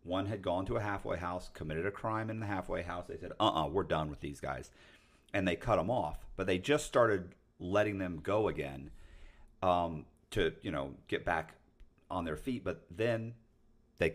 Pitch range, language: 80-110 Hz, English